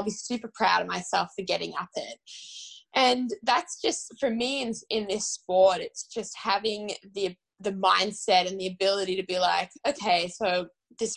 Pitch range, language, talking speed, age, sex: 185-225 Hz, English, 185 wpm, 10-29, female